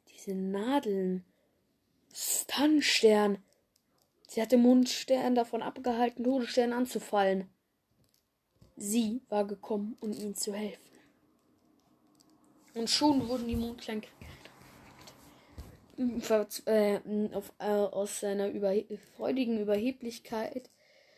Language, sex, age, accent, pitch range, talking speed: German, female, 10-29, German, 210-280 Hz, 85 wpm